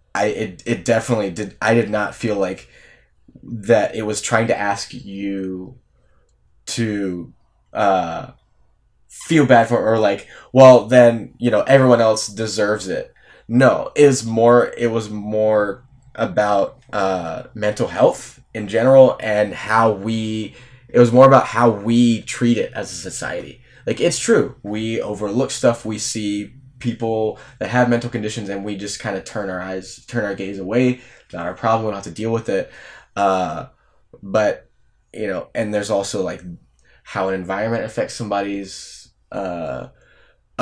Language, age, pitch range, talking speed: English, 20-39, 100-120 Hz, 155 wpm